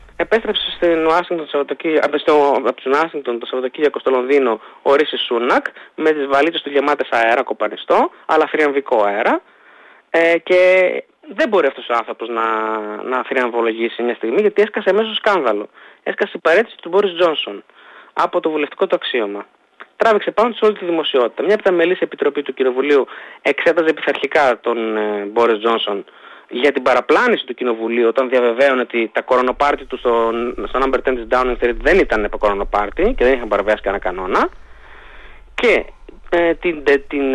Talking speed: 160 wpm